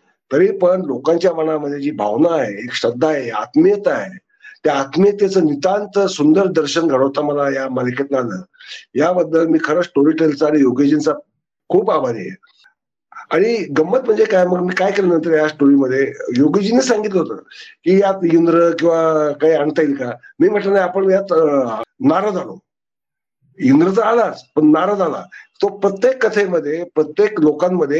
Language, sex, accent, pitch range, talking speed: Marathi, male, native, 155-205 Hz, 150 wpm